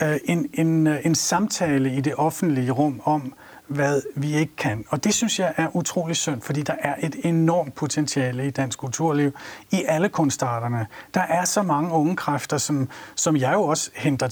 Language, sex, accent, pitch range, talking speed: Danish, male, native, 135-160 Hz, 185 wpm